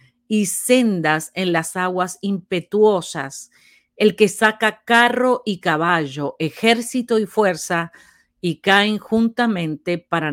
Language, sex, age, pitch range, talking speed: Spanish, female, 40-59, 160-215 Hz, 110 wpm